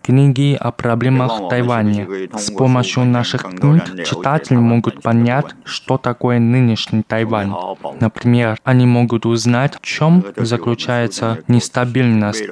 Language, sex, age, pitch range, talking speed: Russian, male, 20-39, 115-125 Hz, 115 wpm